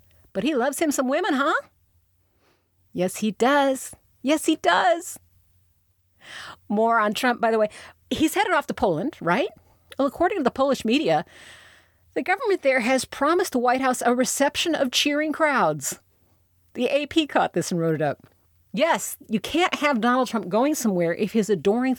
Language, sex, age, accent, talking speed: English, female, 50-69, American, 170 wpm